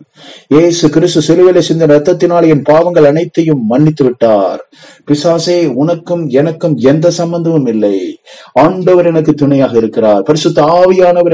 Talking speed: 85 wpm